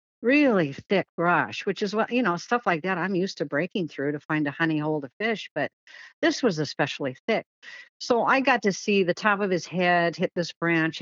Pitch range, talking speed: 160-220 Hz, 225 wpm